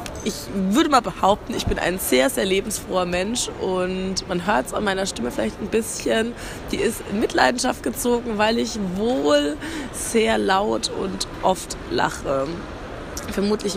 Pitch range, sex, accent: 180-230 Hz, female, German